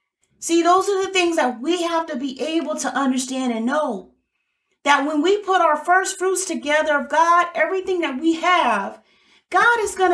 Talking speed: 190 wpm